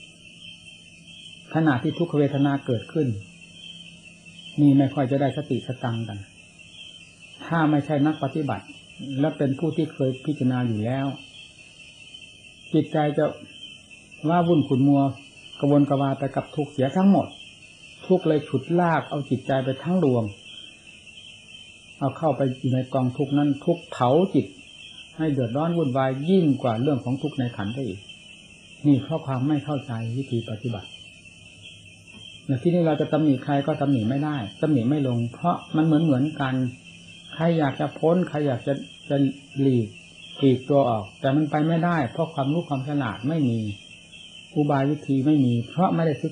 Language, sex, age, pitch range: Thai, male, 60-79, 125-150 Hz